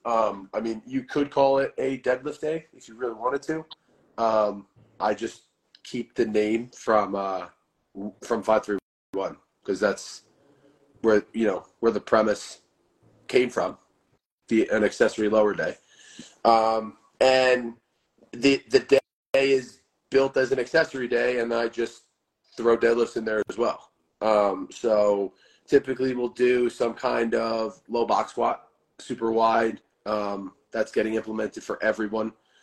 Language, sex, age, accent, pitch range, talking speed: English, male, 30-49, American, 110-130 Hz, 145 wpm